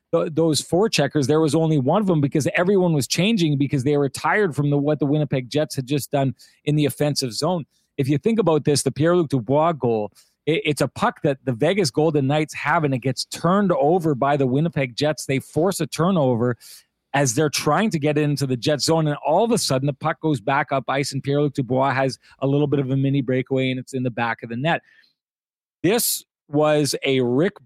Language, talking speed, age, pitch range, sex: English, 225 wpm, 30-49, 130-155 Hz, male